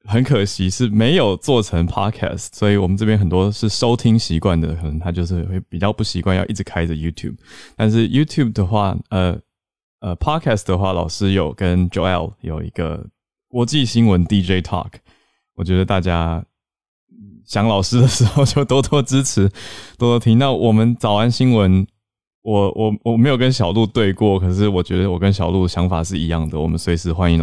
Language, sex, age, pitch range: Chinese, male, 20-39, 85-110 Hz